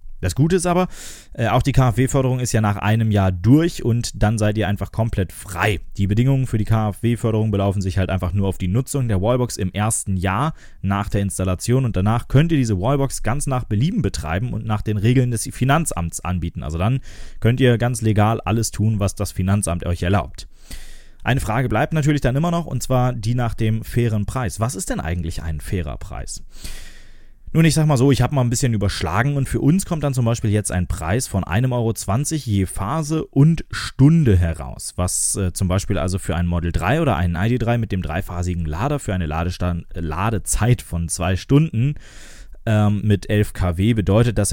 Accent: German